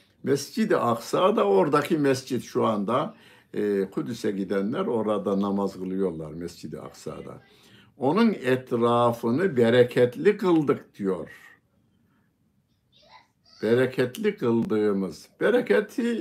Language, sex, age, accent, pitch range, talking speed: Turkish, male, 60-79, native, 100-150 Hz, 80 wpm